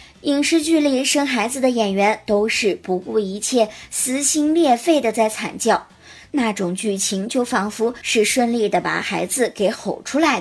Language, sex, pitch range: Chinese, male, 205-275 Hz